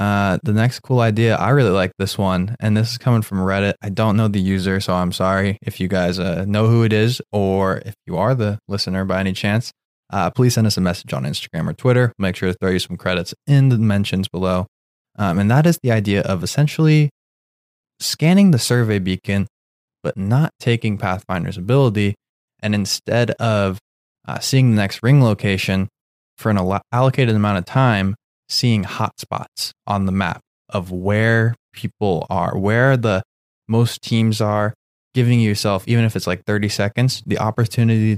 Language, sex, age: English, male, 20-39